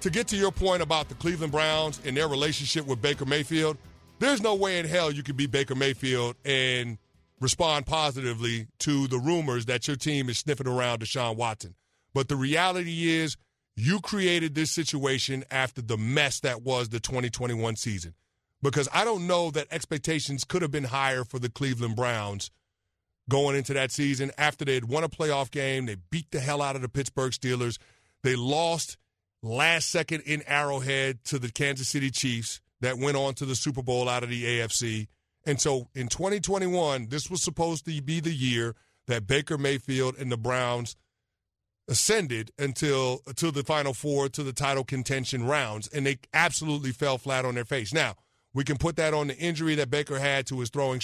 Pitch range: 125-155 Hz